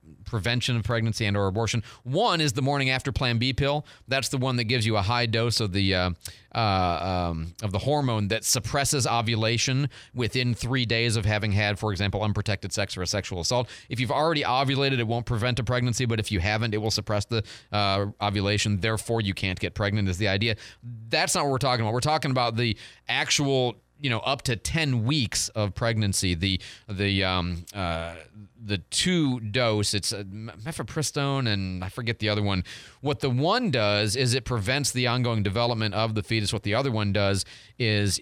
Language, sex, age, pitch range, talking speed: English, male, 30-49, 105-125 Hz, 205 wpm